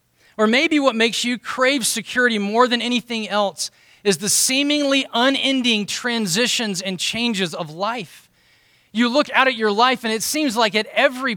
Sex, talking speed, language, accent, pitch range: male, 170 wpm, English, American, 180-250 Hz